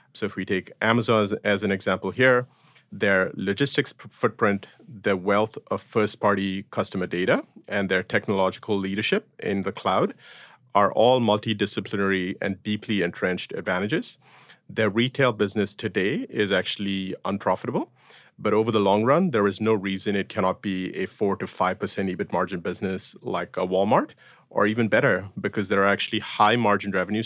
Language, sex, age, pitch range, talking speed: English, male, 30-49, 95-110 Hz, 160 wpm